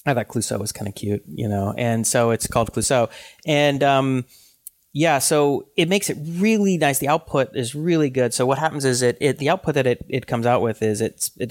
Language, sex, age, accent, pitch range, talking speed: English, male, 30-49, American, 110-135 Hz, 235 wpm